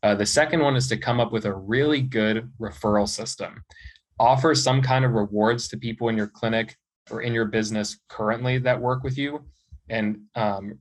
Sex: male